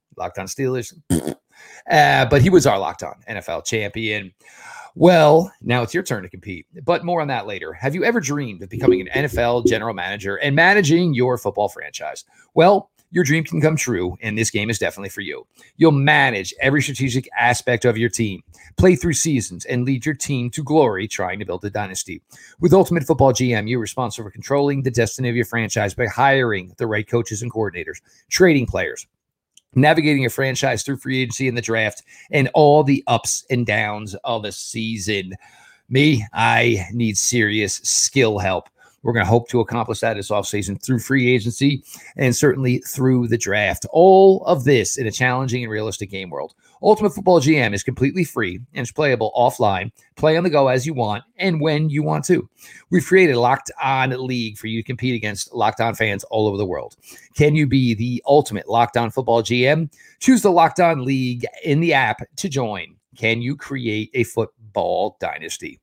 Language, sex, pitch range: English, male, 110-150 Hz